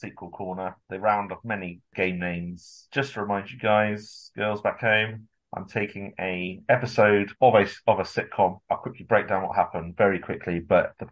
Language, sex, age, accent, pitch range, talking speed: English, male, 30-49, British, 85-105 Hz, 190 wpm